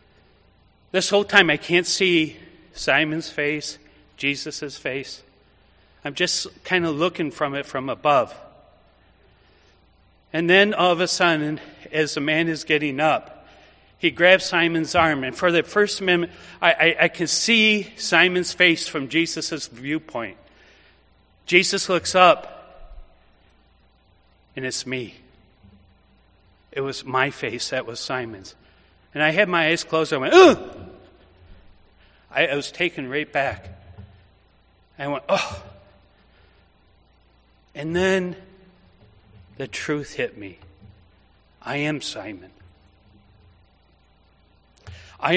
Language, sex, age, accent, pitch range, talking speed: English, male, 40-59, American, 95-160 Hz, 120 wpm